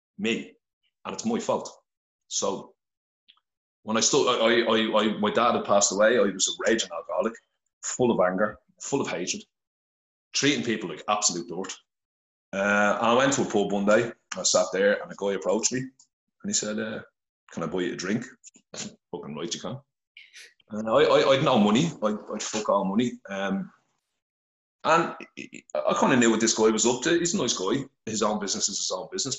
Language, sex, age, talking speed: English, male, 30-49, 205 wpm